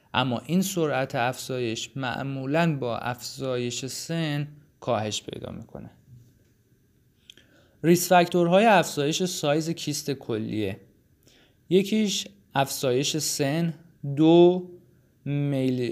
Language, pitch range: Persian, 120-155 Hz